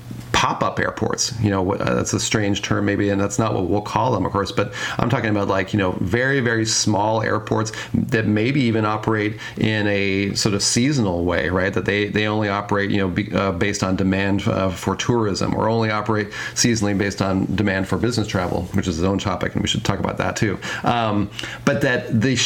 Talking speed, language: 215 wpm, English